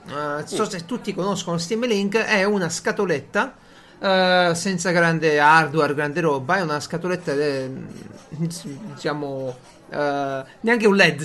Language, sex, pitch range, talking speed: Italian, male, 150-210 Hz, 135 wpm